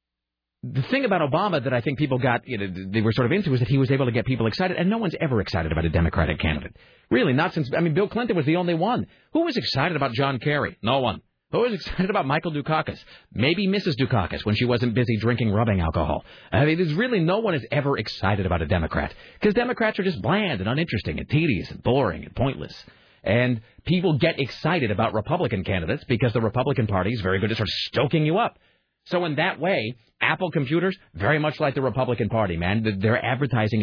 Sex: male